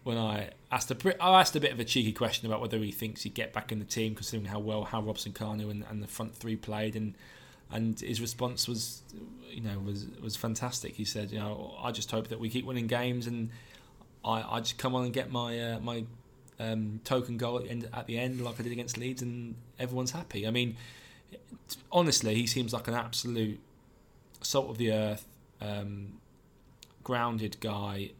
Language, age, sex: English, 20-39, male